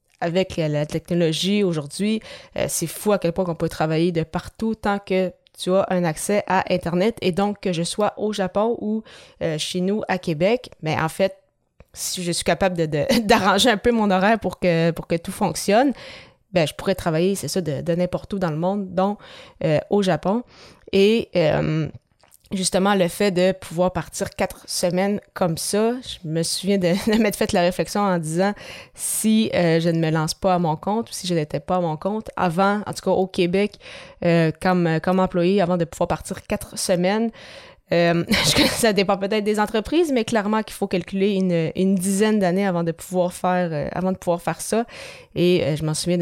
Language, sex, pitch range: French, female, 170-205 Hz